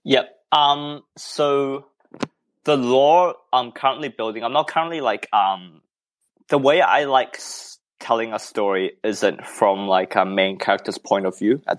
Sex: male